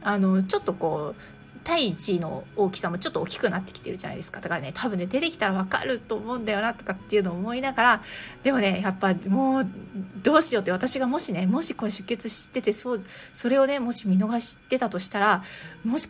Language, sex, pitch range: Japanese, female, 195-270 Hz